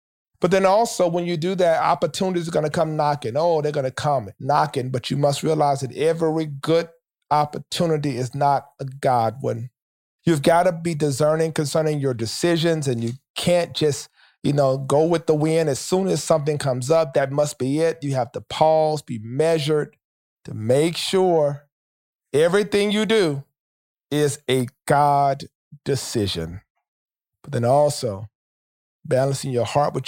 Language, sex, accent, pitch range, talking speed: English, male, American, 135-160 Hz, 165 wpm